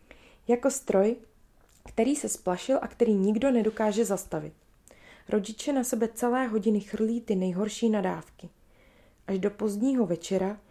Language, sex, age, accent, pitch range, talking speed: Czech, female, 20-39, native, 195-230 Hz, 130 wpm